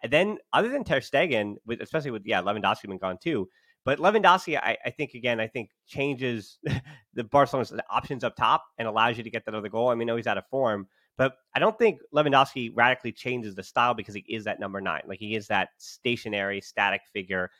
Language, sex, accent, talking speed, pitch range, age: English, male, American, 220 wpm, 110-140 Hz, 30-49